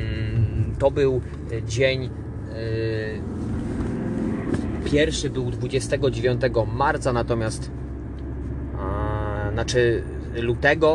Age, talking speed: 20-39, 55 wpm